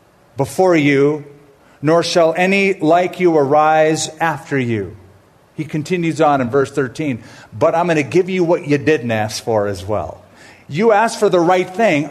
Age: 50-69